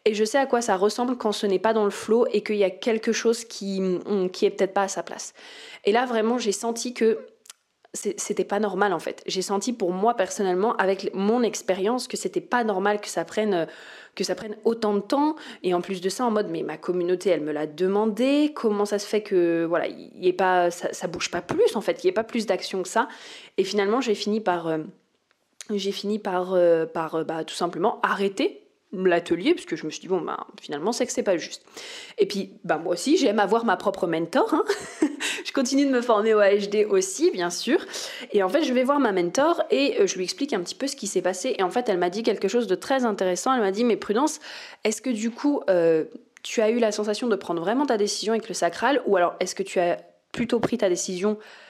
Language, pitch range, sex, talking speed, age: French, 185-245 Hz, female, 245 wpm, 20-39